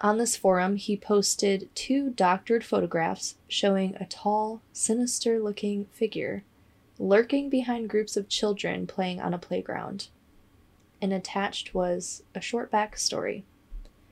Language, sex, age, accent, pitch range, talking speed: English, female, 20-39, American, 175-215 Hz, 120 wpm